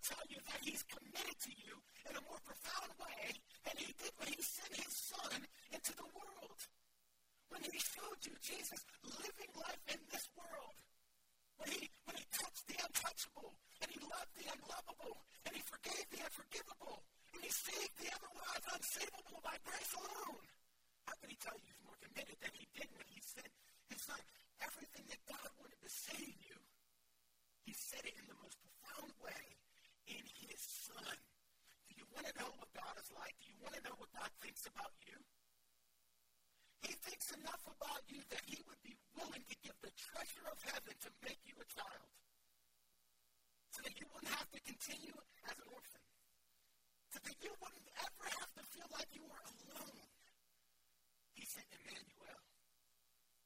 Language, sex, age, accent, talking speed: English, male, 50-69, American, 175 wpm